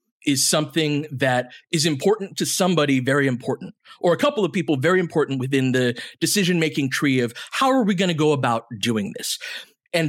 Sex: male